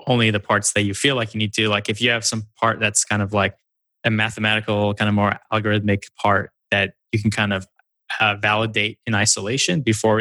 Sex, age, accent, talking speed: male, 20-39, American, 215 wpm